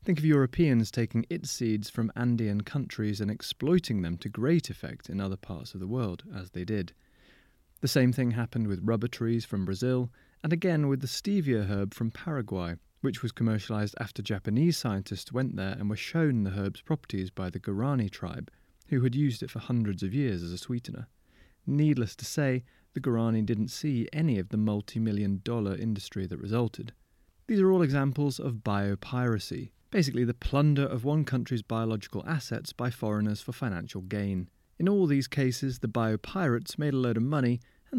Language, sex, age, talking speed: English, male, 30-49, 185 wpm